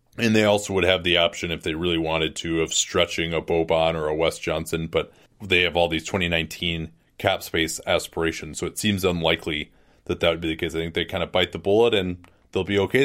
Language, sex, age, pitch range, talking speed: English, male, 30-49, 85-100 Hz, 235 wpm